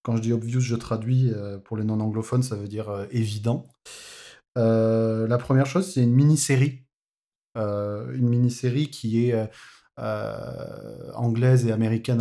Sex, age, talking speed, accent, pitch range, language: male, 30-49, 140 wpm, French, 115-135 Hz, French